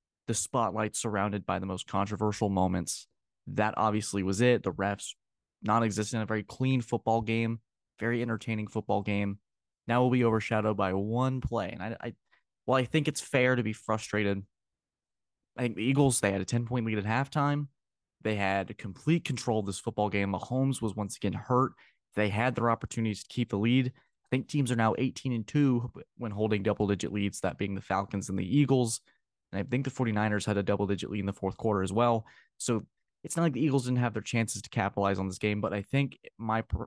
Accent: American